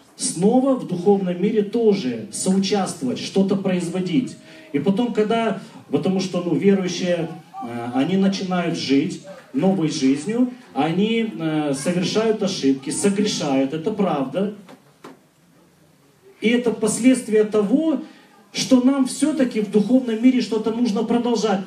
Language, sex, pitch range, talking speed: Russian, male, 175-230 Hz, 110 wpm